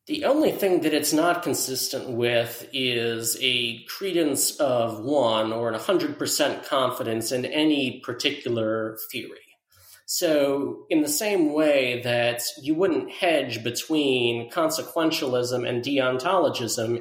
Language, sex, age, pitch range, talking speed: English, male, 40-59, 125-160 Hz, 120 wpm